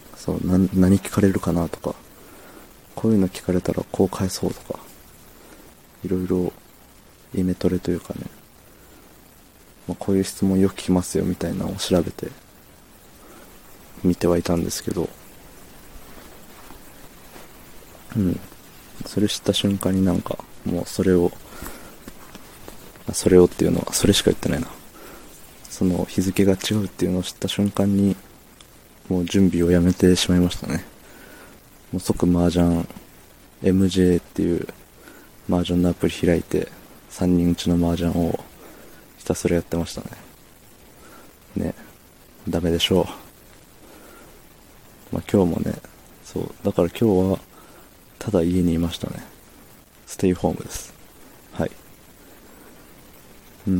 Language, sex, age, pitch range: Japanese, male, 20-39, 85-95 Hz